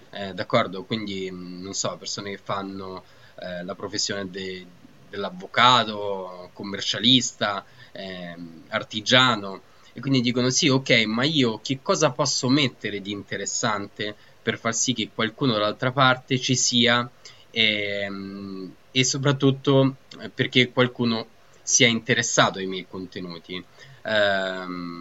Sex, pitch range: male, 100-135 Hz